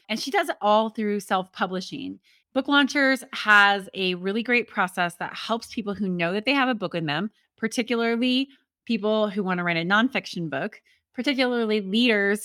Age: 20-39